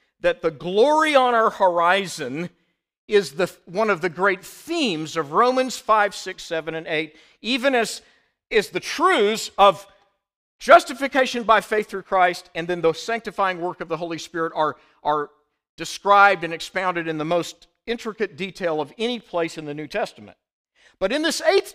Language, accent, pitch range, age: English, American, 175-245 Hz, 50-69